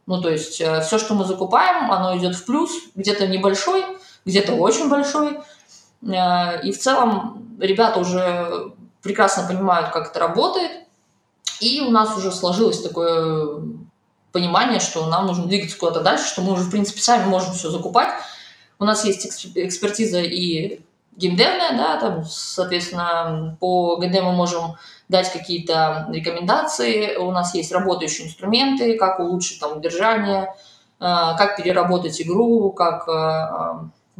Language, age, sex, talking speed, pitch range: Russian, 20-39, female, 140 wpm, 175-225 Hz